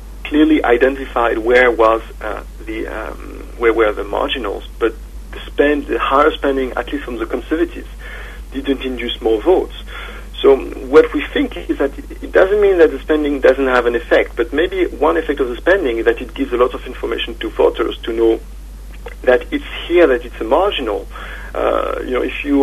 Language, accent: English, French